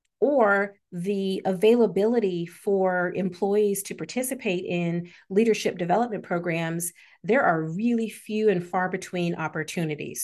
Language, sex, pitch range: English, female, 170-200 Hz